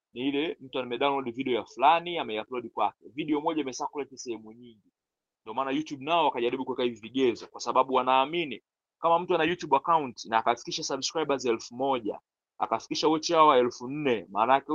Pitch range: 125-175 Hz